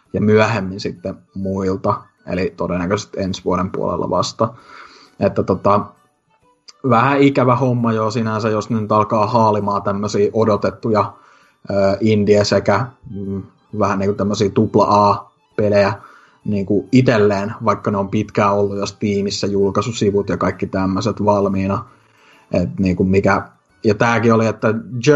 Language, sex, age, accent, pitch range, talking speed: Finnish, male, 20-39, native, 100-120 Hz, 125 wpm